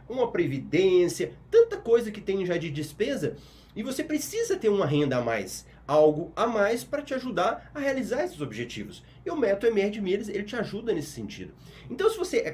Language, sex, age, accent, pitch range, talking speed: Portuguese, male, 30-49, Brazilian, 145-245 Hz, 190 wpm